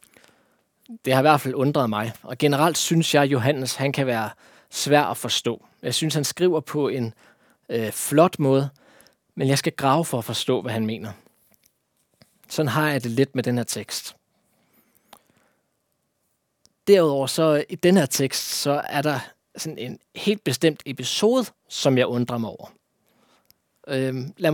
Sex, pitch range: male, 125-155 Hz